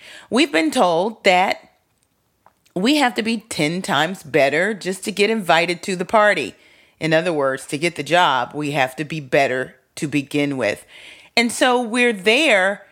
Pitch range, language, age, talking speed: 170-240 Hz, English, 40-59, 170 wpm